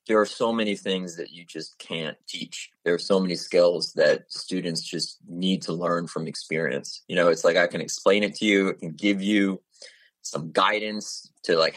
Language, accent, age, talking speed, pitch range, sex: English, American, 30-49, 205 wpm, 90-110 Hz, male